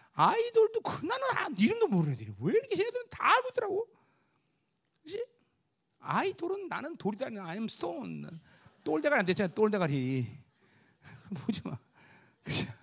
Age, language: 40-59, Korean